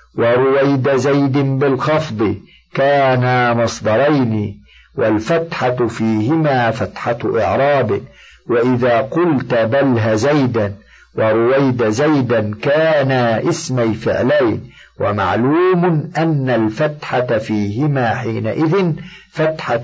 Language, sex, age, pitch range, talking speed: Arabic, male, 50-69, 115-145 Hz, 75 wpm